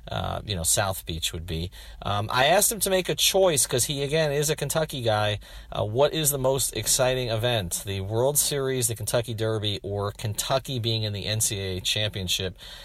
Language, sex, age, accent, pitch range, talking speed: English, male, 40-59, American, 95-120 Hz, 195 wpm